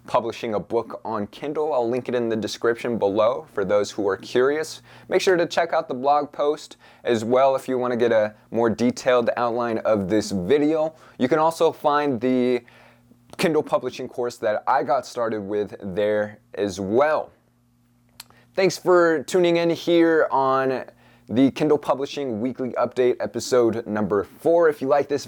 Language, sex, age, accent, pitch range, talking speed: English, male, 20-39, American, 110-145 Hz, 175 wpm